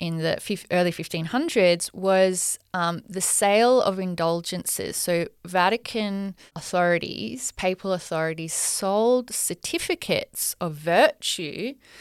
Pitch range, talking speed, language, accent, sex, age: 175-215 Hz, 95 wpm, English, Australian, female, 20-39